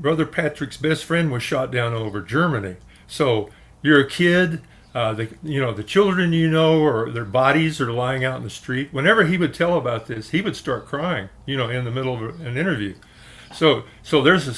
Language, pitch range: English, 110-150 Hz